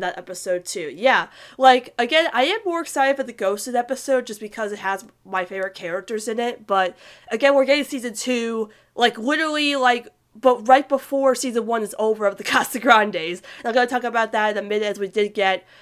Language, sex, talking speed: English, female, 210 wpm